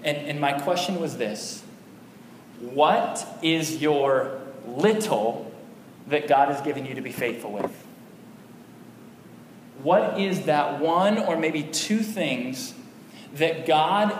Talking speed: 125 wpm